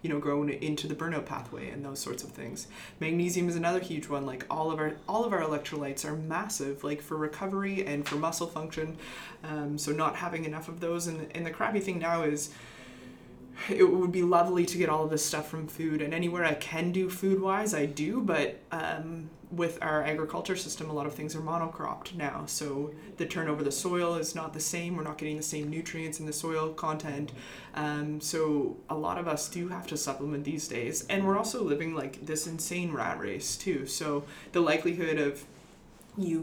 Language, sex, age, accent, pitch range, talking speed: English, female, 20-39, American, 150-175 Hz, 210 wpm